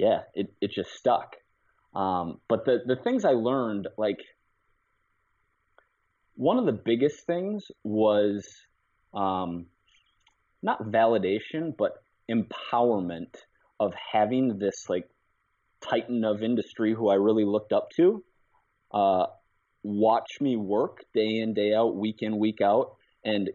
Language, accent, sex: English, American, male